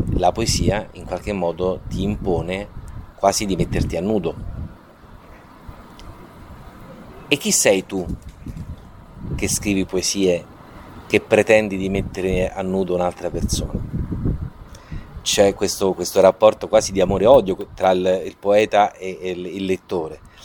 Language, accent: Italian, native